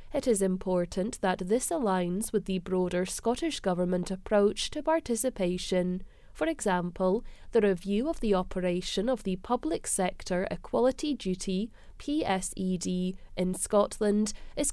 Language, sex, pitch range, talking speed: English, female, 185-235 Hz, 120 wpm